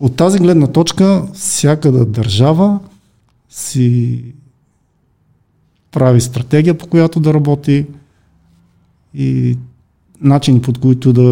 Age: 50-69